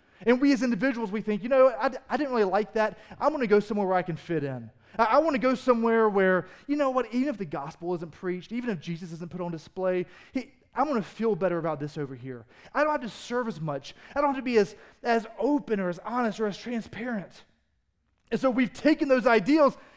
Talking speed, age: 245 wpm, 30-49